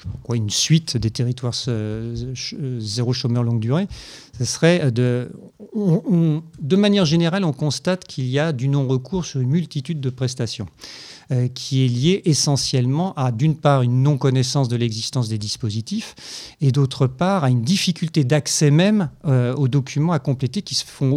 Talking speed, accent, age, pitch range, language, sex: 165 wpm, French, 50-69, 125-150 Hz, French, male